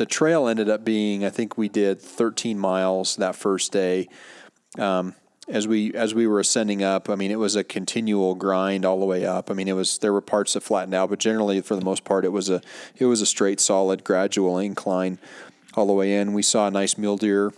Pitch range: 95-110 Hz